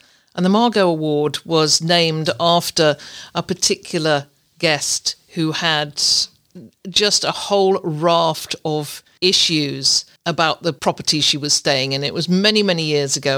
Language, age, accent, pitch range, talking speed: English, 50-69, British, 150-195 Hz, 140 wpm